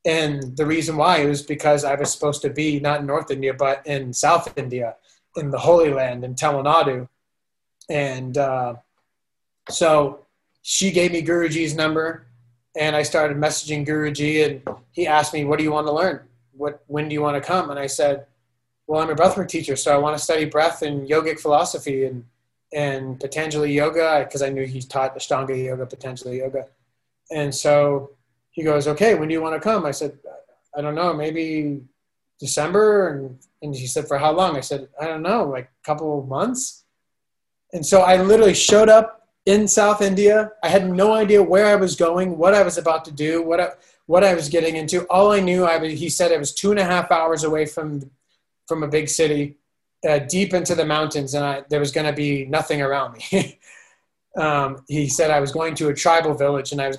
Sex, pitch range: male, 140-170 Hz